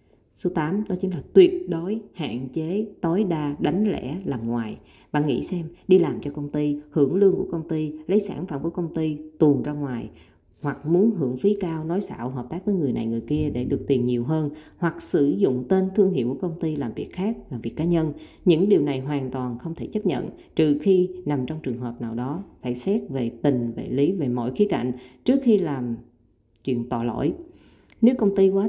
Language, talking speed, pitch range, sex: Vietnamese, 230 wpm, 125-180 Hz, female